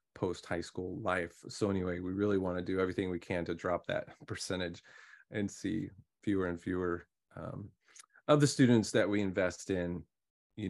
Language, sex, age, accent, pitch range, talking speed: English, male, 30-49, American, 90-115 Hz, 180 wpm